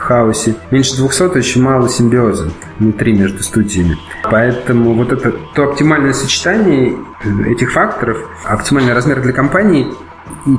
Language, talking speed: Russian, 135 wpm